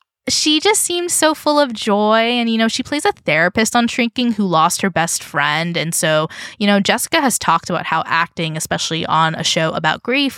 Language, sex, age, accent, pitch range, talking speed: English, female, 10-29, American, 175-265 Hz, 215 wpm